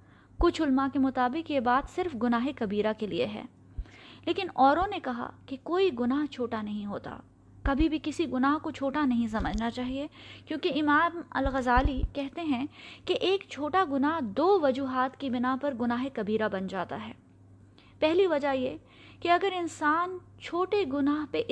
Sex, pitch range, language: female, 230-300 Hz, Urdu